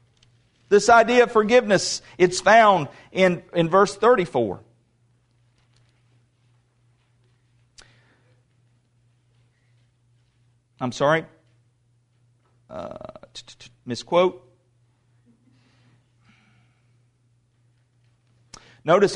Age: 40-59